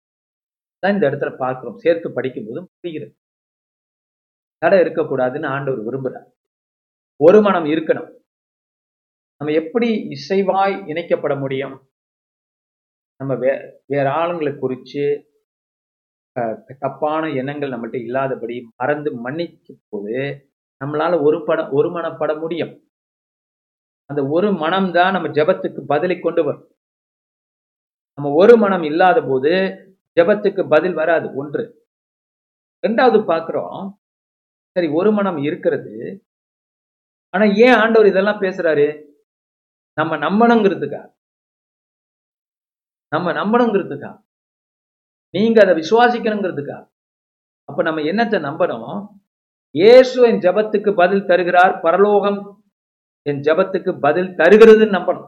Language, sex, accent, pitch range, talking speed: Tamil, male, native, 145-200 Hz, 95 wpm